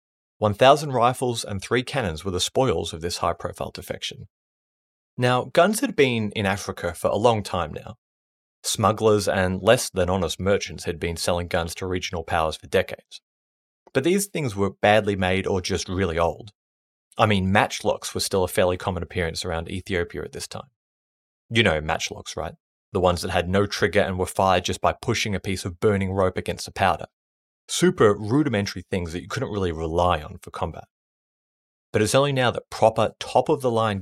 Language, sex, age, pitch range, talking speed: English, male, 30-49, 90-115 Hz, 180 wpm